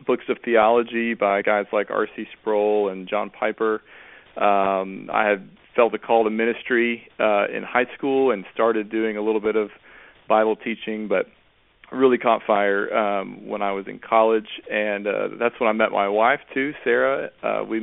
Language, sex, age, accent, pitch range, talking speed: English, male, 40-59, American, 105-120 Hz, 180 wpm